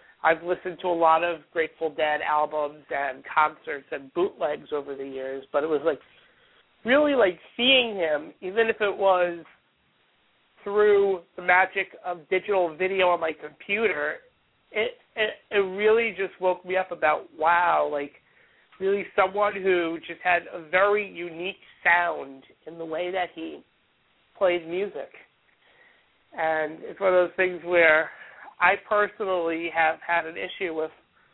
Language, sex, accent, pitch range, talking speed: English, male, American, 165-205 Hz, 150 wpm